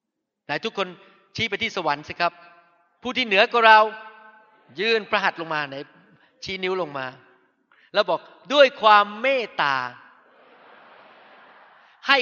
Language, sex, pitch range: Thai, male, 180-265 Hz